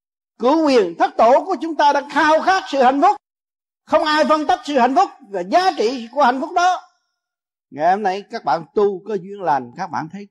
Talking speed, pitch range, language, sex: 225 wpm, 215-310 Hz, Vietnamese, male